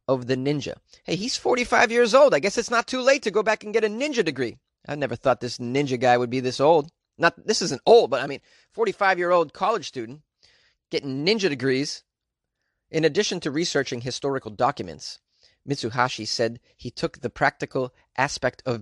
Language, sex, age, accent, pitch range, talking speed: English, male, 30-49, American, 125-165 Hz, 190 wpm